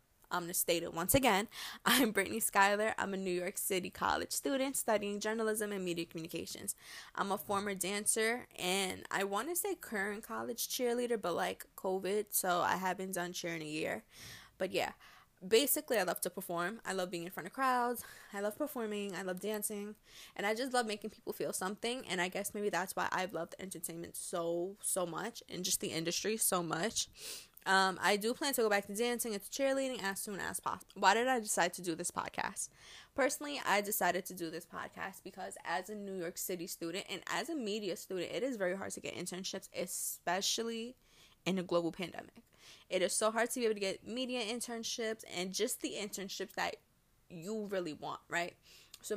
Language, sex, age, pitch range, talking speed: English, female, 10-29, 180-225 Hz, 205 wpm